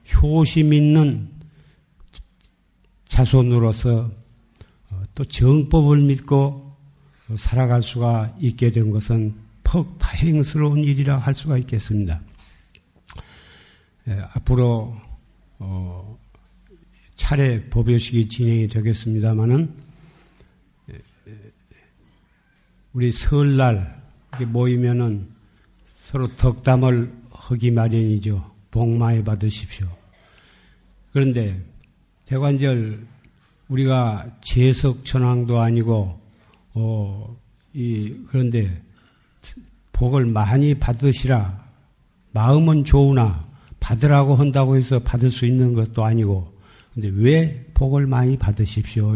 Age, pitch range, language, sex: 50-69, 110-135 Hz, Korean, male